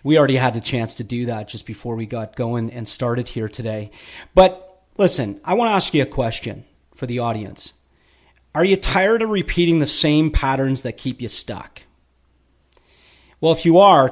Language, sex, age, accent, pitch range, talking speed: English, male, 40-59, American, 120-160 Hz, 190 wpm